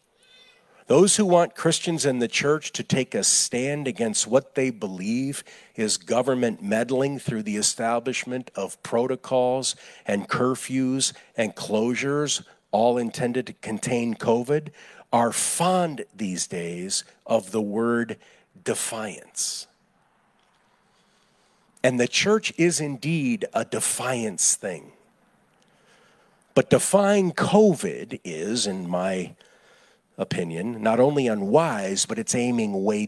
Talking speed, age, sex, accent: 110 wpm, 50-69, male, American